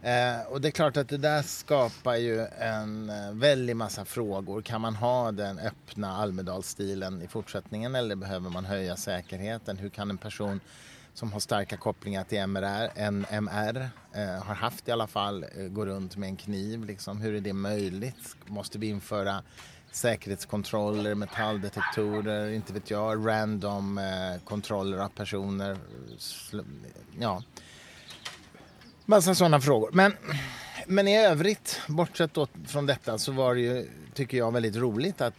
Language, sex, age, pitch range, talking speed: English, male, 30-49, 100-120 Hz, 160 wpm